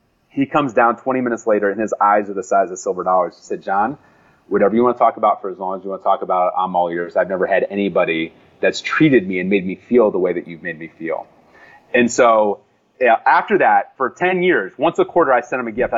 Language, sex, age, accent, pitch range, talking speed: English, male, 30-49, American, 110-160 Hz, 265 wpm